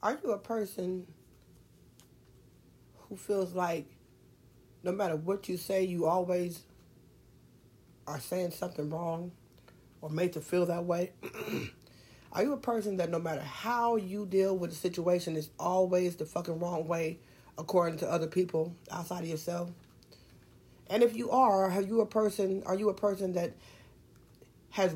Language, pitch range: English, 170-195 Hz